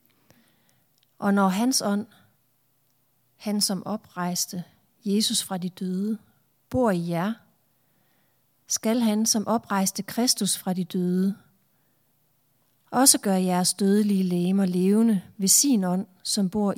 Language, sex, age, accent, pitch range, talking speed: Danish, female, 40-59, native, 170-210 Hz, 120 wpm